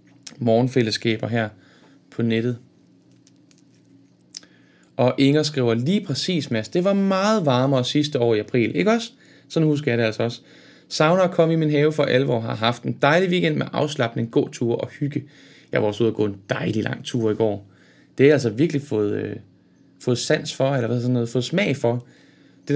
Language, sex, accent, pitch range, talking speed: Danish, male, native, 115-145 Hz, 200 wpm